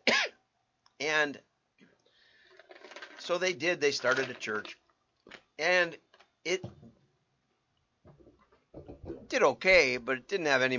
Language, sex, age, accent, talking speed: English, male, 50-69, American, 95 wpm